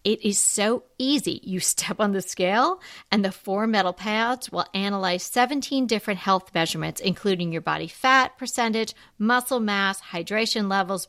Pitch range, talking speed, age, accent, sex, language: 180-235 Hz, 155 wpm, 40-59, American, female, English